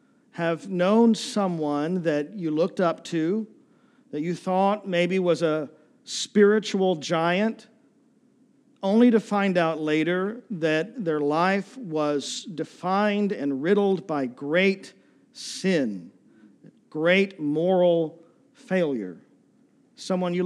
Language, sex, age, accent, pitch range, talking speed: English, male, 50-69, American, 155-220 Hz, 105 wpm